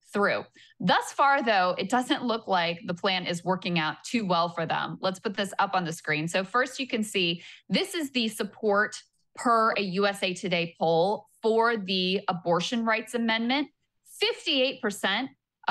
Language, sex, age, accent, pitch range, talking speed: English, female, 20-39, American, 180-235 Hz, 170 wpm